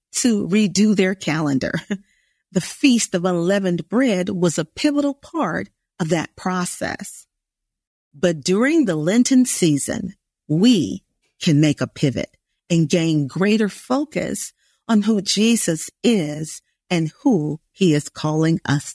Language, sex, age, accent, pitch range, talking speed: English, female, 40-59, American, 155-215 Hz, 125 wpm